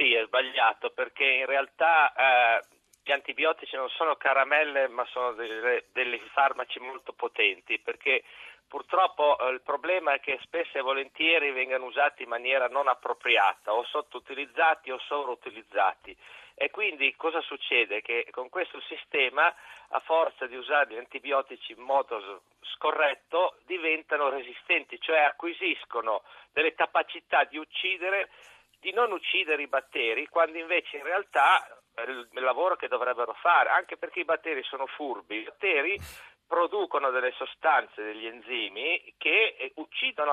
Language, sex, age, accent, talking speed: Italian, male, 40-59, native, 140 wpm